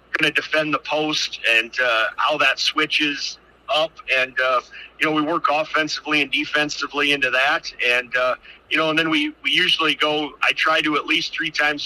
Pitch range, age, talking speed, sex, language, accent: 145-160 Hz, 40-59, 190 wpm, male, English, American